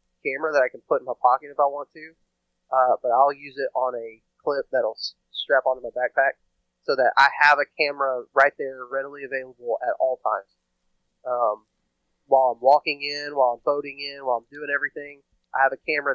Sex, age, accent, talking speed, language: male, 30-49, American, 205 wpm, English